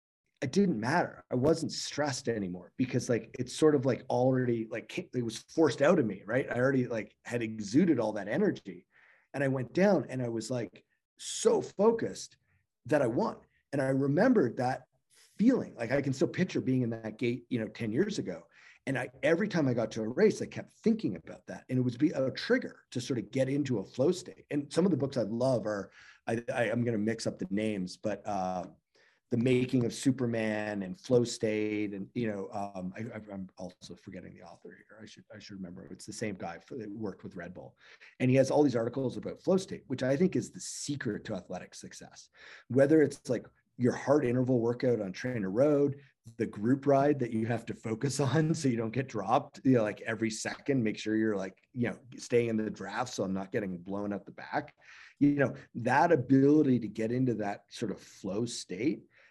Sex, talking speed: male, 220 wpm